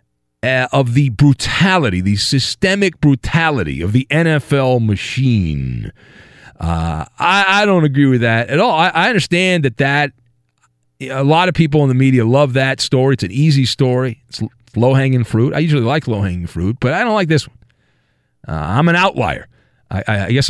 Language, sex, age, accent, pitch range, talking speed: English, male, 40-59, American, 105-145 Hz, 180 wpm